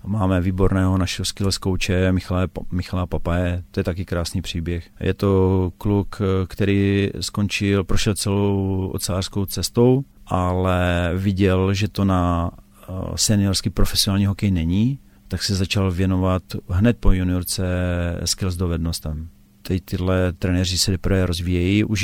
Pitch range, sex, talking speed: 90-100 Hz, male, 130 wpm